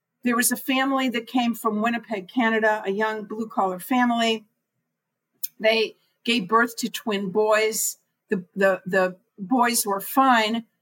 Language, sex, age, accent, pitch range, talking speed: English, female, 50-69, American, 200-235 Hz, 145 wpm